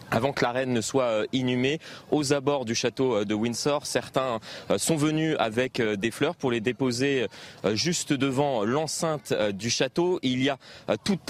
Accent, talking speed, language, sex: French, 165 wpm, French, male